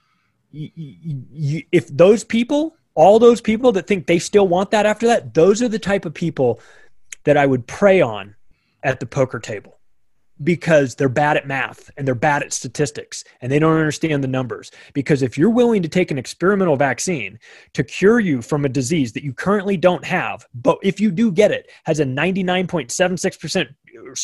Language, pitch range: English, 140-190 Hz